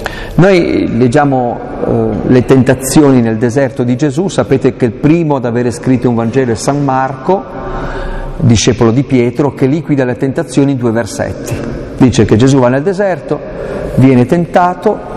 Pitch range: 115-145 Hz